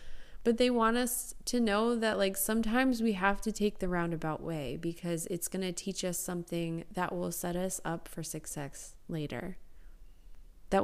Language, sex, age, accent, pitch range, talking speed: English, female, 20-39, American, 155-195 Hz, 175 wpm